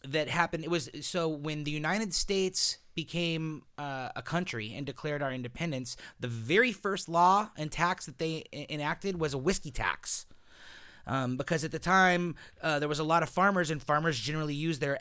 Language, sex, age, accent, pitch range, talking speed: English, male, 30-49, American, 140-175 Hz, 190 wpm